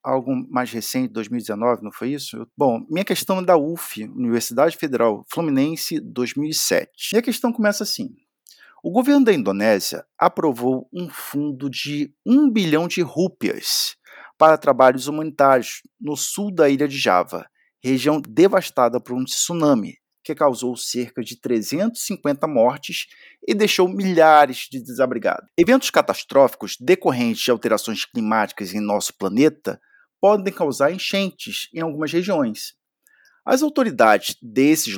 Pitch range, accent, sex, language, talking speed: 130-190 Hz, Brazilian, male, Portuguese, 130 wpm